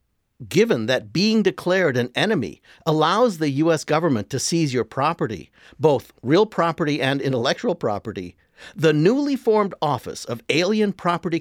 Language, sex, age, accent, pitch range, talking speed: English, male, 50-69, American, 130-195 Hz, 140 wpm